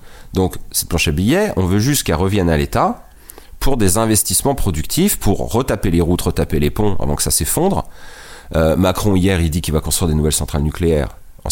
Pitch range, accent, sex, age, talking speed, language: 80-100 Hz, French, male, 30-49, 210 wpm, French